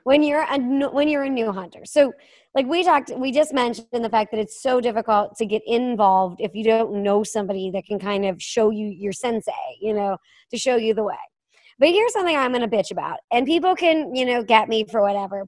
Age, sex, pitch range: 30-49, male, 215-285 Hz